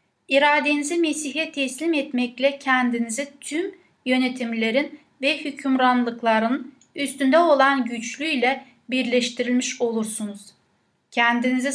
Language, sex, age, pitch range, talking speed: Turkish, female, 10-29, 240-295 Hz, 75 wpm